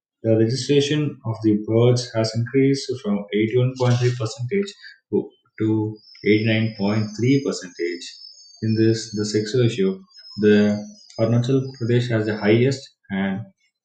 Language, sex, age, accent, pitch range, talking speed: English, male, 20-39, Indian, 110-125 Hz, 135 wpm